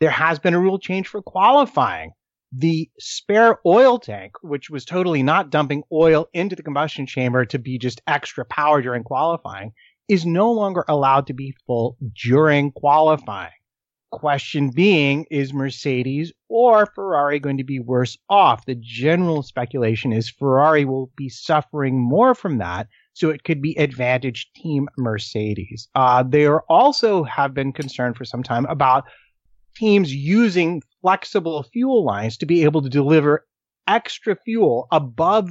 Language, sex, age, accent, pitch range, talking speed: English, male, 30-49, American, 130-170 Hz, 150 wpm